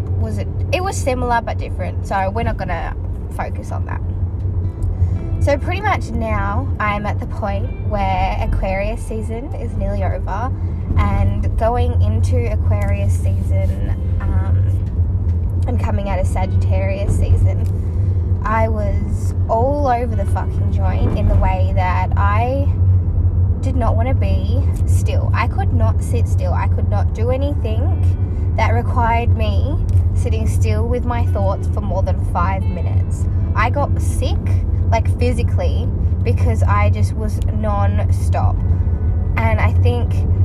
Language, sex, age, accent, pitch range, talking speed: English, female, 10-29, Australian, 90-95 Hz, 140 wpm